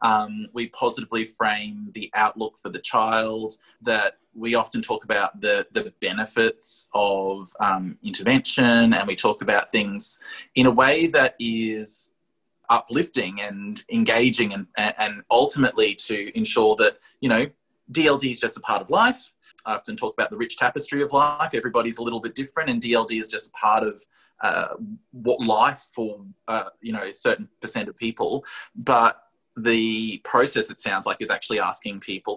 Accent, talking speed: Australian, 170 wpm